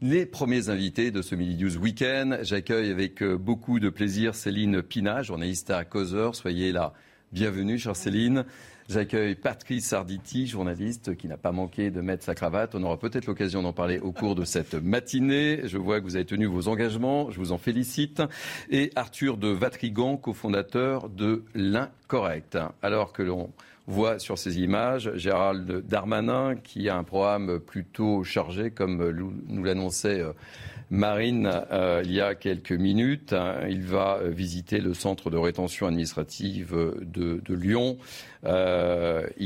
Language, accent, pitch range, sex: French, French, 90-110 Hz, male